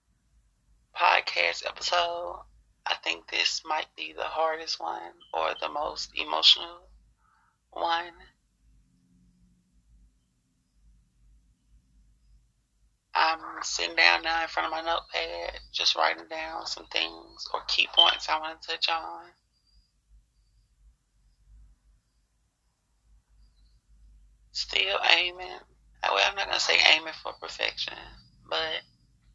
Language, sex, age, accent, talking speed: English, male, 30-49, American, 100 wpm